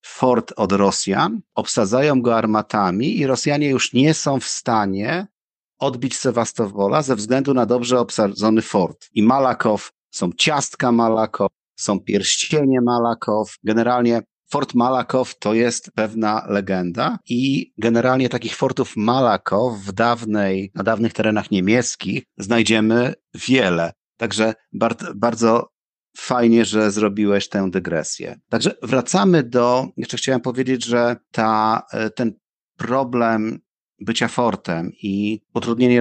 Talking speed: 115 wpm